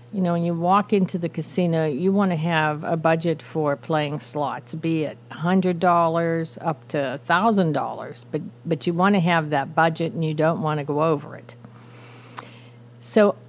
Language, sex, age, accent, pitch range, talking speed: English, female, 50-69, American, 150-185 Hz, 175 wpm